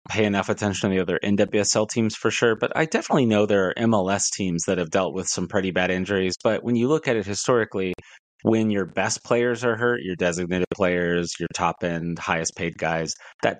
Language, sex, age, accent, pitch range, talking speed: English, male, 30-49, American, 90-110 Hz, 215 wpm